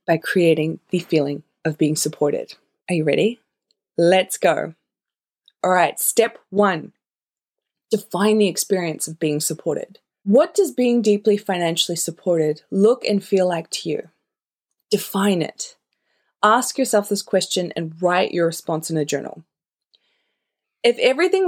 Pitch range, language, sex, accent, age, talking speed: 170-220 Hz, English, female, Australian, 20-39, 135 wpm